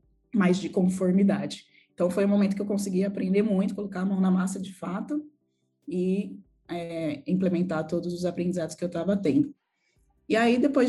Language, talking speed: Portuguese, 175 wpm